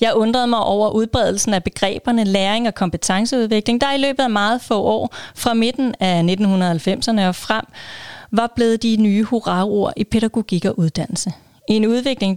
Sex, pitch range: female, 190-235 Hz